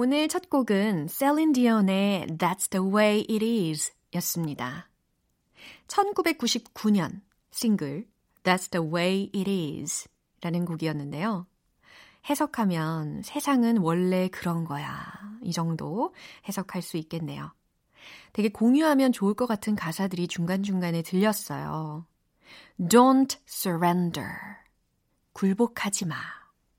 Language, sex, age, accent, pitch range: Korean, female, 30-49, native, 170-230 Hz